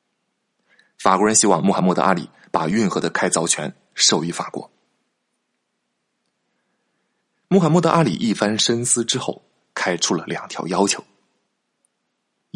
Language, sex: Chinese, male